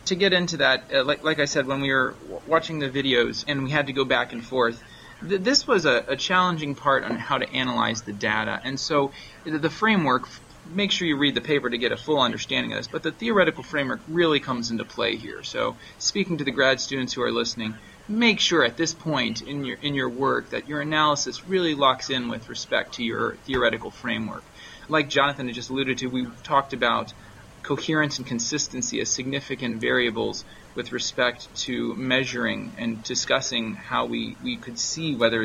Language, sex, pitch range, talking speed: English, male, 115-155 Hz, 205 wpm